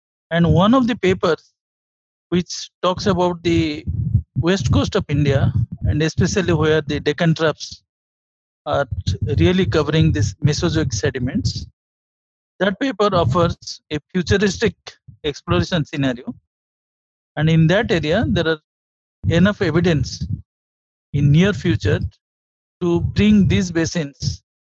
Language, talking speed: English, 115 wpm